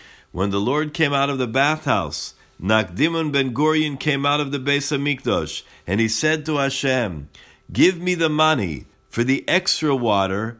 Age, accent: 50-69, American